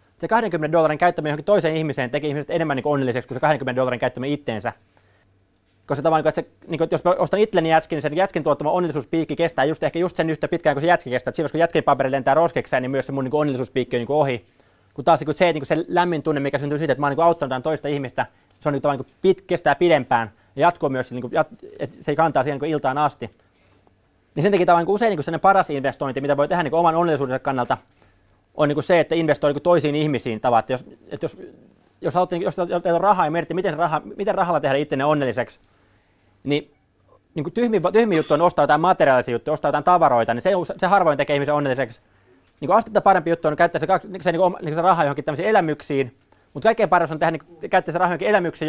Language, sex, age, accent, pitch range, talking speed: Finnish, male, 20-39, native, 130-170 Hz, 215 wpm